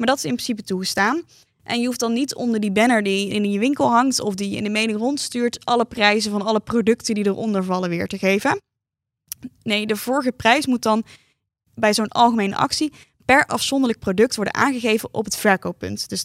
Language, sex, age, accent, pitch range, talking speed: Dutch, female, 10-29, Dutch, 195-235 Hz, 205 wpm